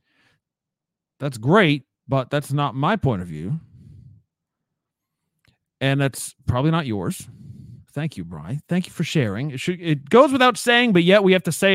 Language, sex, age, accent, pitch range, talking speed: English, male, 40-59, American, 125-170 Hz, 170 wpm